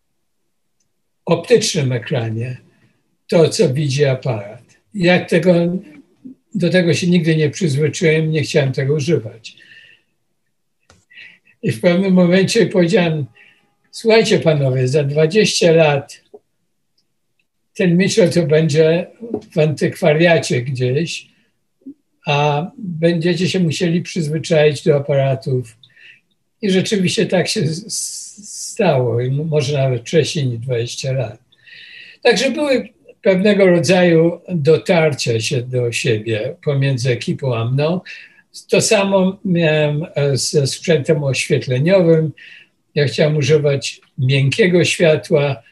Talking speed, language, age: 100 wpm, Polish, 60-79